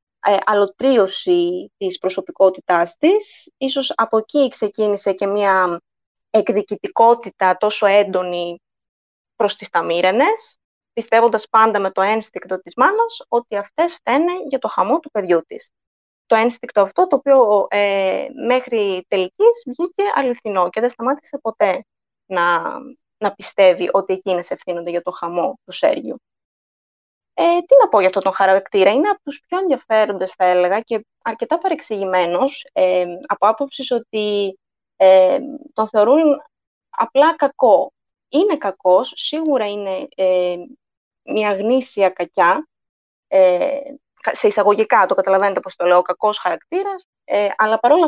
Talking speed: 130 wpm